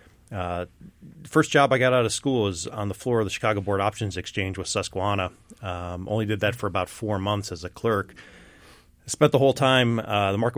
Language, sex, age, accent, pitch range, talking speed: English, male, 30-49, American, 95-115 Hz, 220 wpm